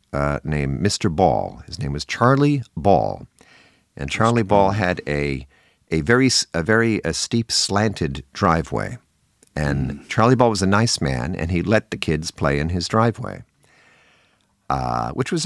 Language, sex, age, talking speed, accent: English, male, 50-69, 160 wpm, American